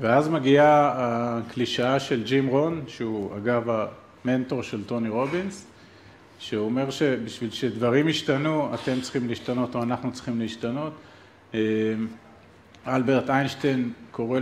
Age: 40-59